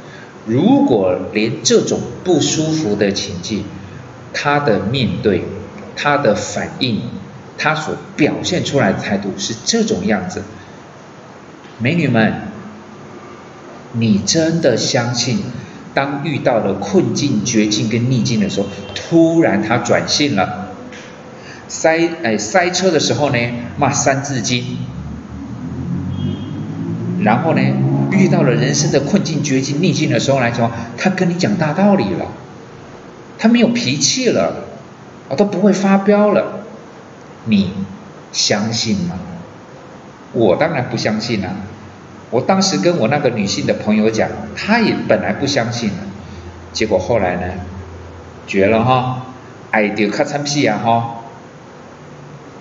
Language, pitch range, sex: Chinese, 105-165 Hz, male